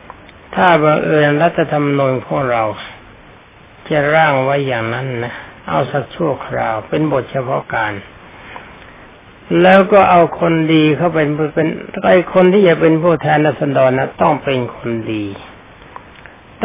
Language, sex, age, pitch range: Thai, male, 60-79, 125-160 Hz